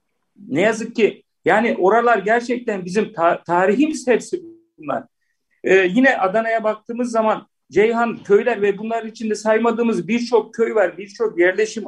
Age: 50-69